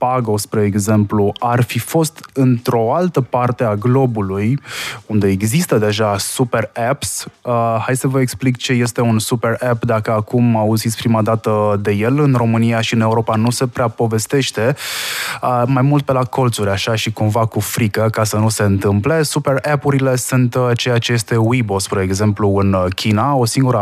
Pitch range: 105-125 Hz